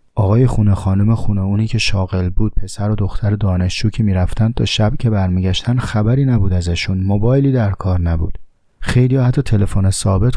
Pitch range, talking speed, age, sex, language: 95-115 Hz, 170 wpm, 30-49, male, Persian